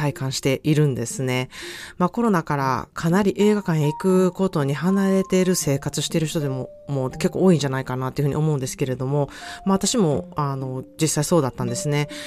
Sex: female